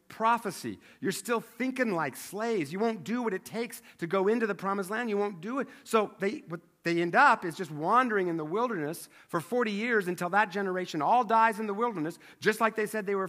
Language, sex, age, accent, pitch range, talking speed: English, male, 50-69, American, 145-195 Hz, 230 wpm